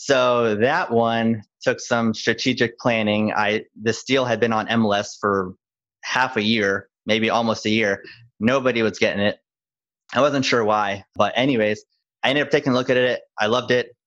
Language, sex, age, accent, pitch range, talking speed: English, male, 30-49, American, 105-120 Hz, 185 wpm